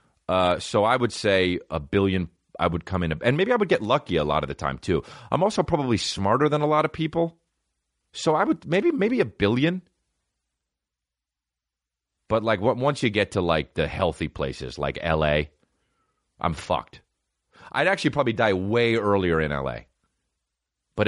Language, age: English, 30-49